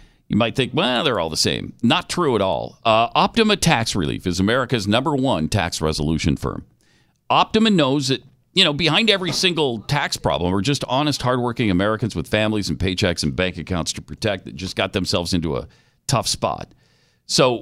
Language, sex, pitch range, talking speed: English, male, 100-150 Hz, 190 wpm